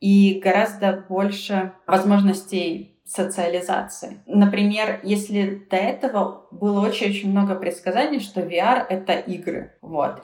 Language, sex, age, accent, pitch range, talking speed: Russian, female, 20-39, native, 190-250 Hz, 110 wpm